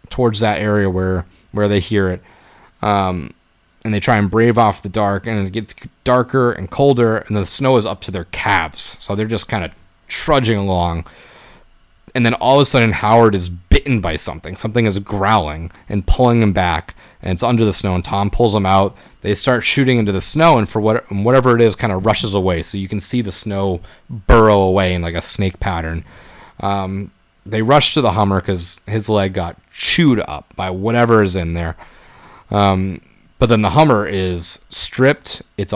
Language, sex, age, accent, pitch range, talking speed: English, male, 30-49, American, 95-115 Hz, 205 wpm